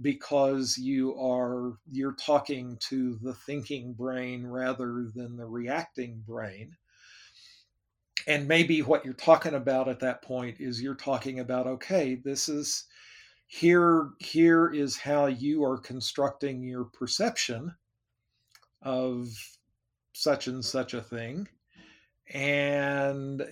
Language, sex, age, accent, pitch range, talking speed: English, male, 50-69, American, 125-145 Hz, 115 wpm